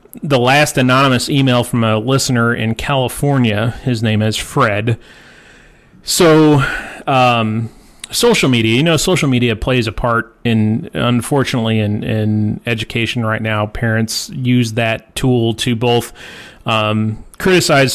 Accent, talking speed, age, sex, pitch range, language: American, 130 wpm, 30-49, male, 110-135 Hz, English